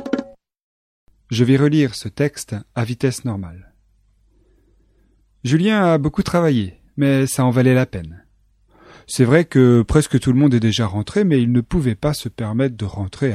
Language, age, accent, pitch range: French, 30-49, French, 105-155 Hz